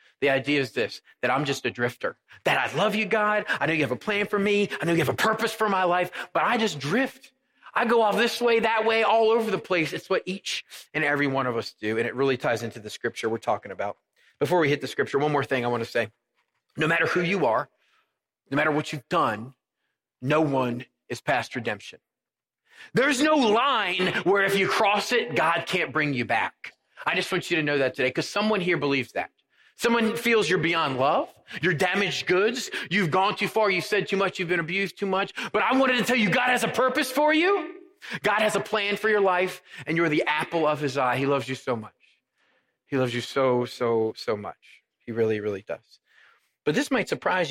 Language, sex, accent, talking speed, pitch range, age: English, male, American, 235 wpm, 140-210 Hz, 30-49